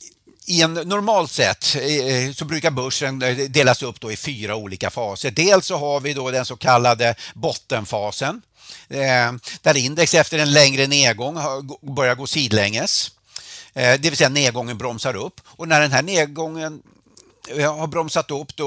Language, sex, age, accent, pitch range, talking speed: Swedish, male, 60-79, native, 125-160 Hz, 150 wpm